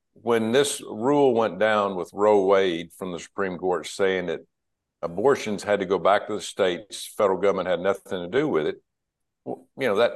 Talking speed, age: 200 wpm, 60-79